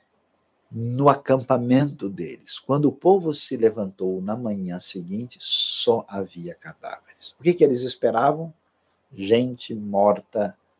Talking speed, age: 115 wpm, 50-69